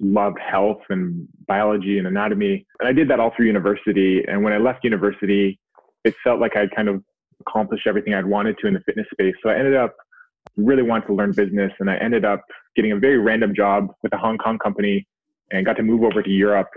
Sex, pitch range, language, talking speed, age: male, 100-115 Hz, English, 225 wpm, 20-39